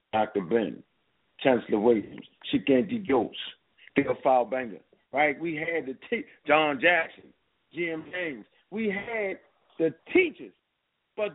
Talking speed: 115 wpm